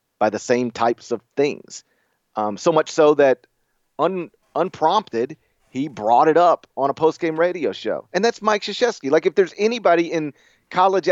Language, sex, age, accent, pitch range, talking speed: English, male, 40-59, American, 120-170 Hz, 175 wpm